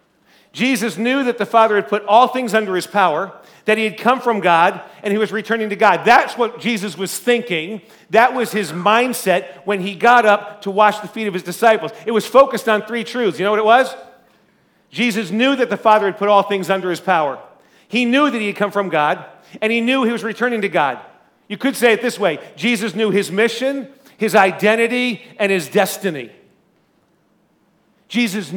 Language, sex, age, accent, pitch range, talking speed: English, male, 40-59, American, 195-235 Hz, 210 wpm